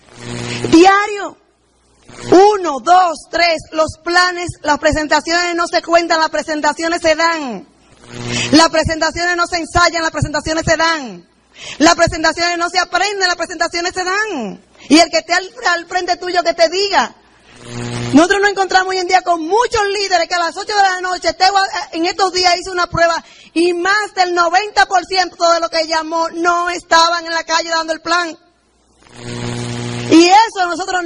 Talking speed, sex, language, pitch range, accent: 170 wpm, female, Spanish, 320-365 Hz, American